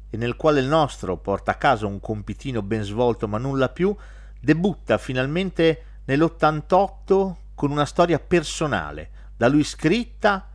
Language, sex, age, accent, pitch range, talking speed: Italian, male, 40-59, native, 110-170 Hz, 140 wpm